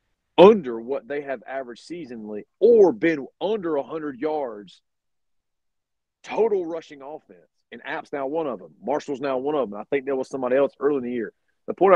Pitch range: 115-130 Hz